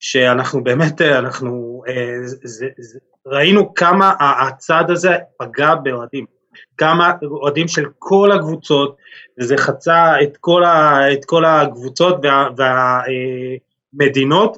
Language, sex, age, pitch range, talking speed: Hebrew, male, 20-39, 130-170 Hz, 110 wpm